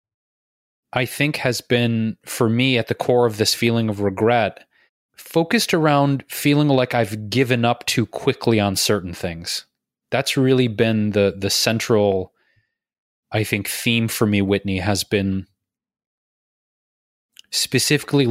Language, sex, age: English, male, 20-39